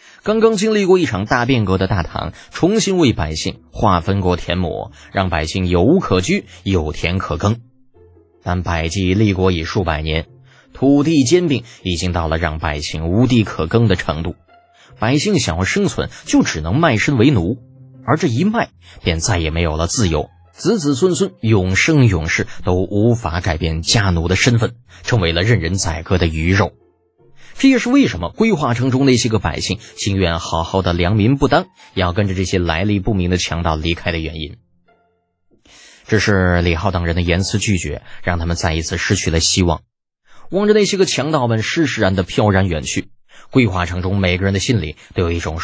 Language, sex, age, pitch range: Chinese, male, 20-39, 85-125 Hz